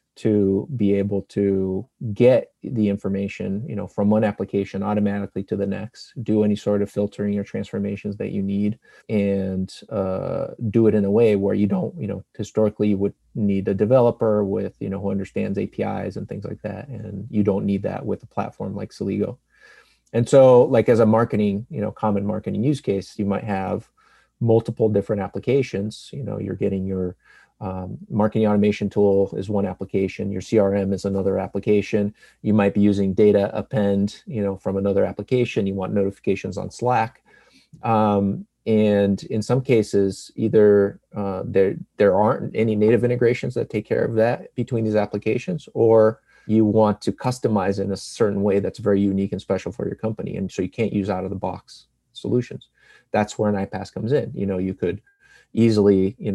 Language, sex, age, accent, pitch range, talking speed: English, male, 30-49, American, 100-110 Hz, 185 wpm